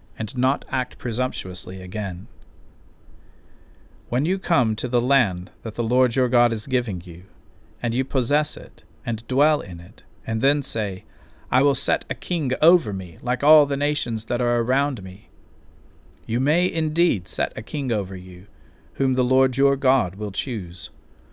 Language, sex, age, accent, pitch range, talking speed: English, male, 40-59, American, 90-130 Hz, 170 wpm